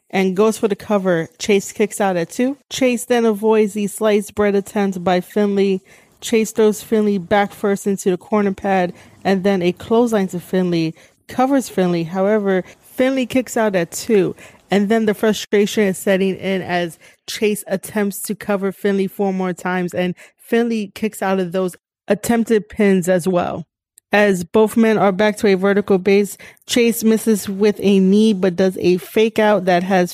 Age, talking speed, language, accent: 20-39, 175 wpm, English, American